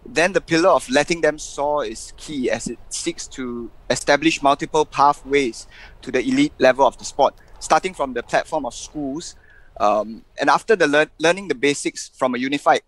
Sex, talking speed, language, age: male, 185 wpm, English, 20-39